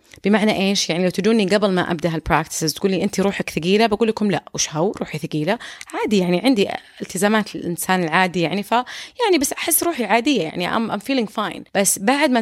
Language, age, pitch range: Arabic, 30-49, 175-215 Hz